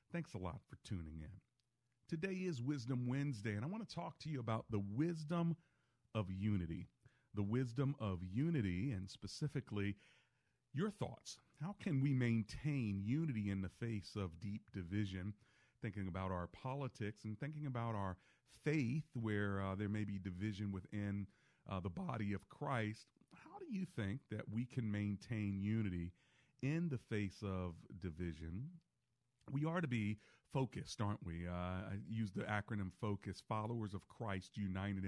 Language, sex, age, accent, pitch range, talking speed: English, male, 40-59, American, 95-130 Hz, 155 wpm